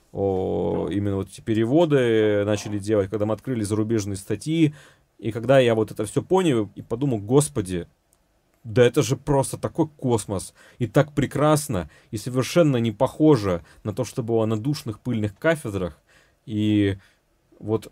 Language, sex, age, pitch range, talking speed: Russian, male, 30-49, 105-135 Hz, 150 wpm